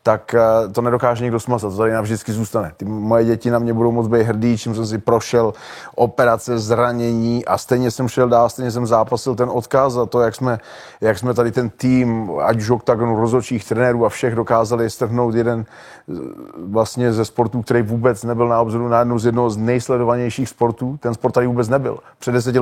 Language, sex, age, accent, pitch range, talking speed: Czech, male, 30-49, native, 115-120 Hz, 200 wpm